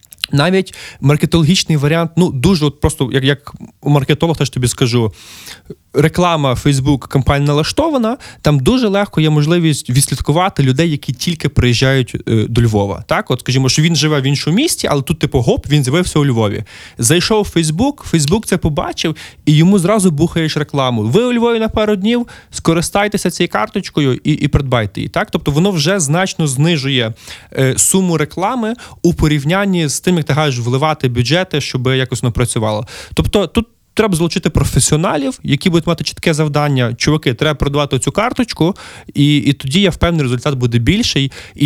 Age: 20-39